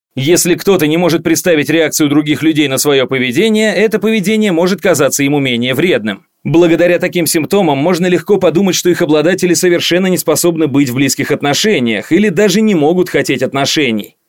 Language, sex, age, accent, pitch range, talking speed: Russian, male, 30-49, native, 145-185 Hz, 170 wpm